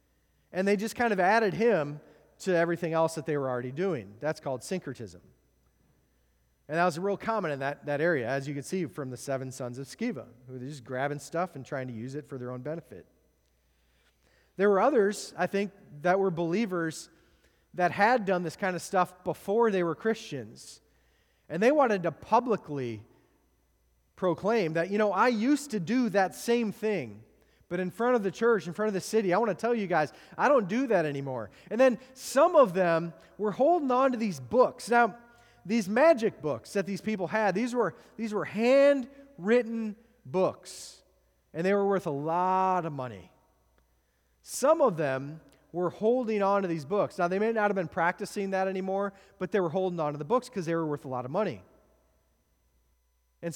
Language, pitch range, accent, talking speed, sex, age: English, 135-210 Hz, American, 195 wpm, male, 30-49